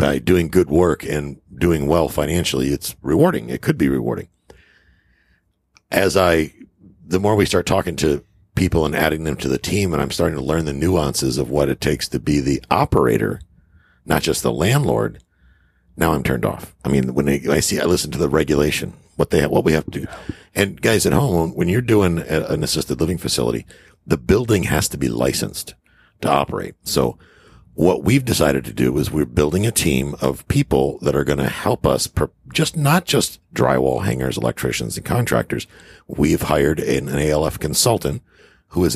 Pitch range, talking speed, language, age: 70-90 Hz, 190 wpm, English, 50-69